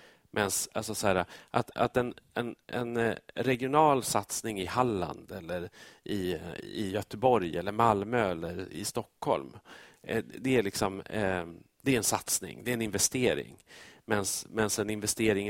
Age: 40-59